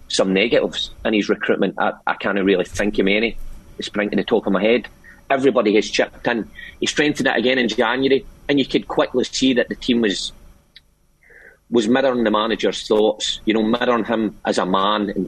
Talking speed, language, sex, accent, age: 205 wpm, English, male, British, 30-49